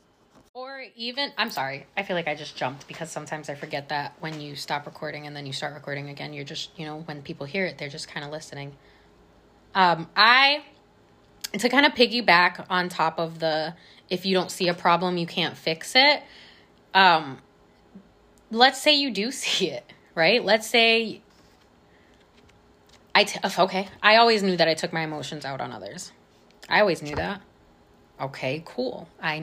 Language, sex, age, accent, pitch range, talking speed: English, female, 20-39, American, 155-205 Hz, 180 wpm